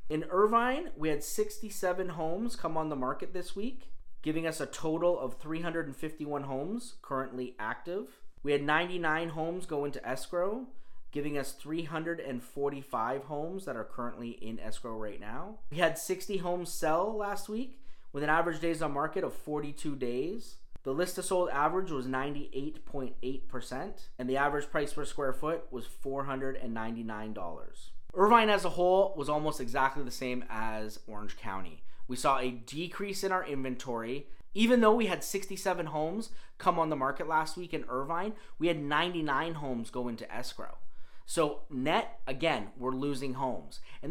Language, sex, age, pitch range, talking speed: English, male, 30-49, 130-175 Hz, 160 wpm